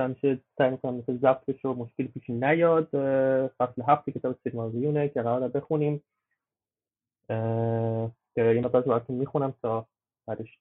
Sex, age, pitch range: male, 30-49, 125-155 Hz